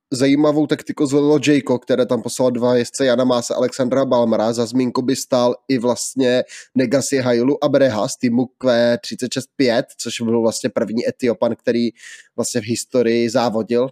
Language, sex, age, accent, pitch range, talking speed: Czech, male, 20-39, native, 120-135 Hz, 160 wpm